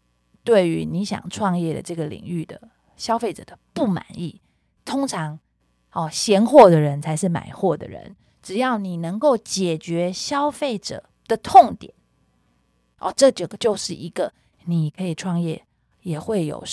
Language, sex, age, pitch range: Chinese, female, 30-49, 160-230 Hz